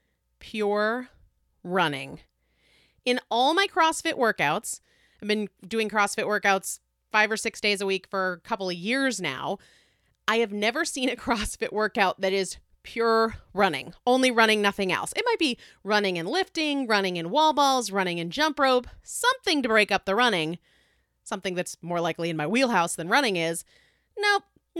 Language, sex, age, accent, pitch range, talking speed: English, female, 30-49, American, 180-265 Hz, 170 wpm